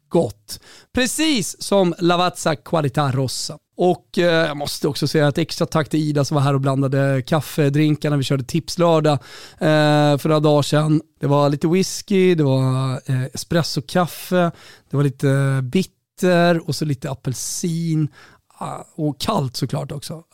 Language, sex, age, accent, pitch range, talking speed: Swedish, male, 30-49, native, 140-170 Hz, 150 wpm